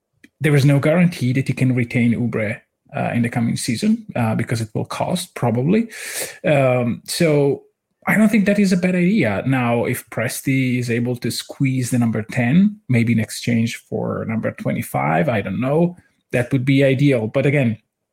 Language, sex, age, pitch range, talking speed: English, male, 30-49, 120-145 Hz, 180 wpm